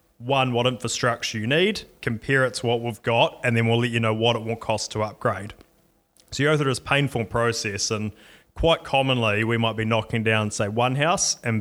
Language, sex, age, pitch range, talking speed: English, male, 20-39, 110-125 Hz, 220 wpm